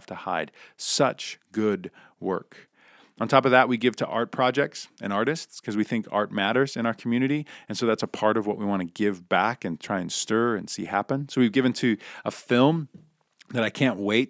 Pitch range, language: 100-125 Hz, English